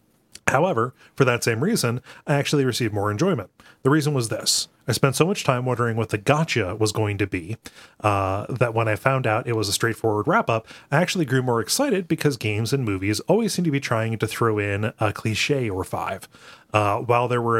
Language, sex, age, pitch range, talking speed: English, male, 30-49, 110-135 Hz, 215 wpm